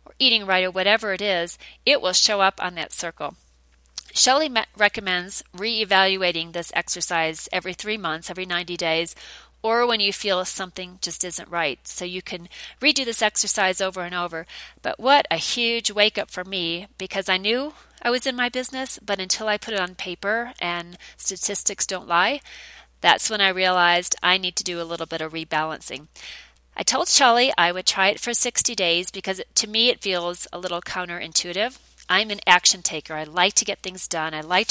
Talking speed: 190 wpm